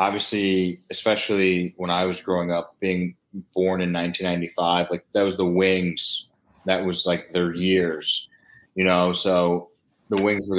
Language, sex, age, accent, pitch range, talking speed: English, male, 20-39, American, 85-95 Hz, 155 wpm